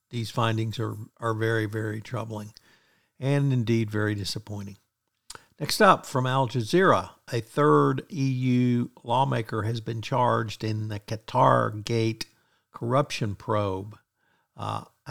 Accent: American